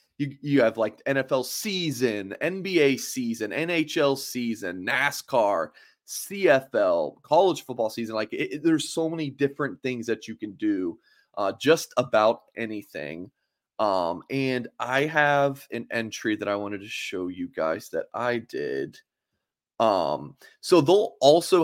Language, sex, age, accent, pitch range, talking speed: English, male, 20-39, American, 120-160 Hz, 140 wpm